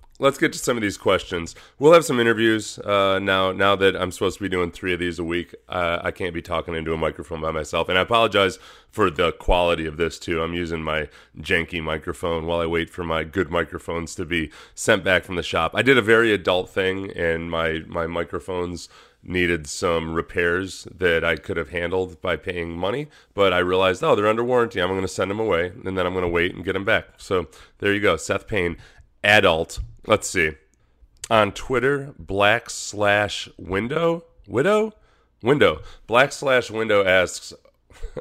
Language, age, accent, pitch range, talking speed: English, 30-49, American, 85-115 Hz, 200 wpm